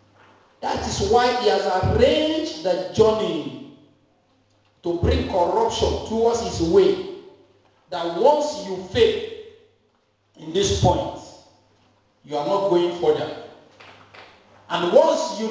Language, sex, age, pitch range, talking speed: English, male, 50-69, 160-240 Hz, 110 wpm